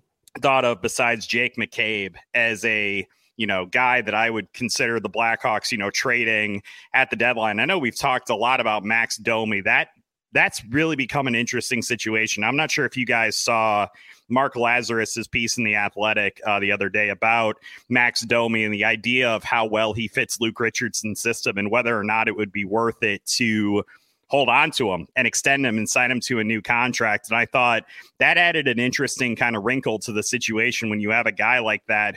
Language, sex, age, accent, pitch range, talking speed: English, male, 30-49, American, 105-125 Hz, 210 wpm